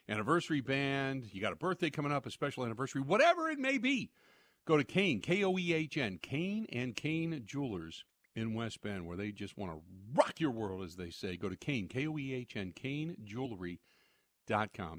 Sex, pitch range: male, 105-150 Hz